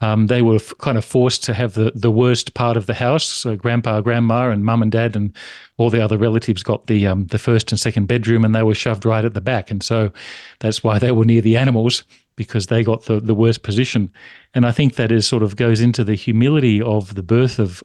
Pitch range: 110-120 Hz